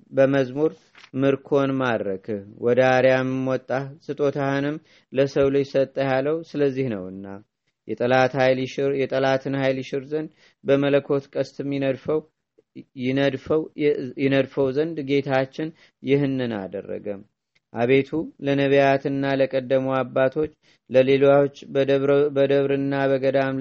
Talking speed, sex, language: 90 wpm, male, Amharic